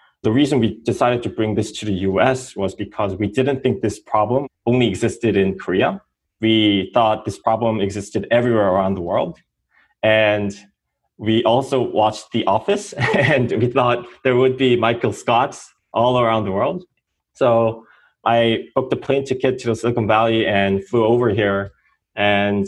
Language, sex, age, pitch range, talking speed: English, male, 20-39, 100-125 Hz, 165 wpm